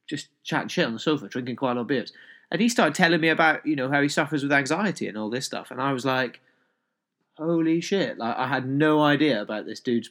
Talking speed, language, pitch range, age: 255 wpm, English, 130-175 Hz, 30-49